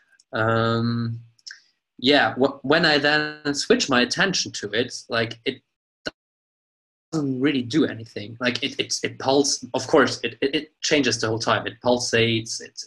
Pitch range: 115-140 Hz